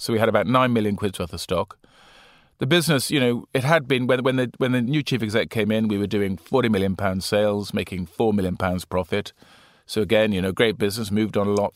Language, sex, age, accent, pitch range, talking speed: English, male, 40-59, British, 95-130 Hz, 250 wpm